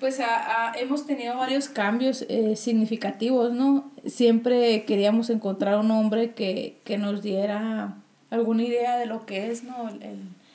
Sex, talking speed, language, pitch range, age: female, 160 wpm, Spanish, 205-235 Hz, 20-39